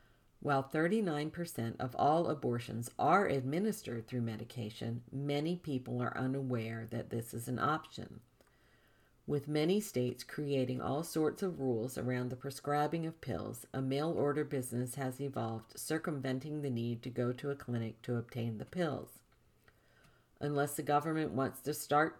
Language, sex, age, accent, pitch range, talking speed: English, female, 50-69, American, 120-150 Hz, 145 wpm